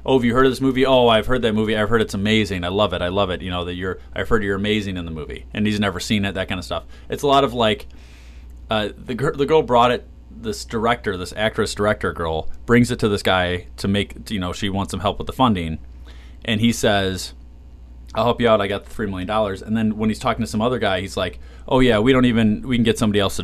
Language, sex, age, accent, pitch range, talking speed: English, male, 30-49, American, 80-110 Hz, 285 wpm